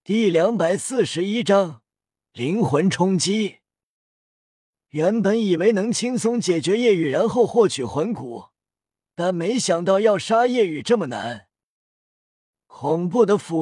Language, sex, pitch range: Chinese, male, 160-220 Hz